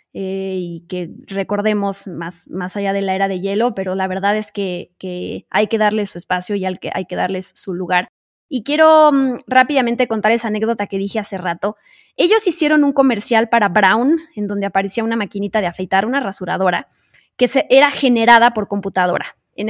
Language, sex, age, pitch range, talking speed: Spanish, female, 20-39, 195-255 Hz, 185 wpm